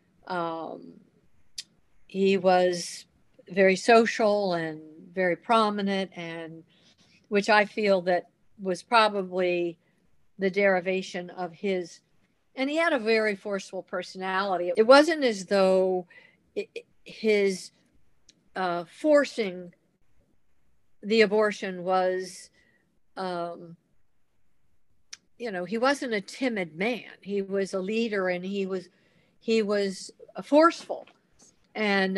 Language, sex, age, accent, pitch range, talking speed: English, female, 50-69, American, 185-220 Hz, 105 wpm